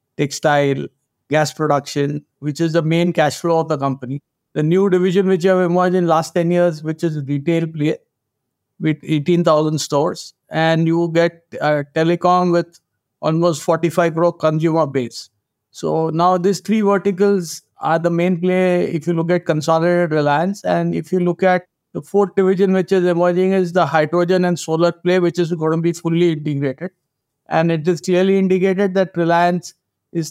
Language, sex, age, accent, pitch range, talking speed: English, male, 50-69, Indian, 150-180 Hz, 175 wpm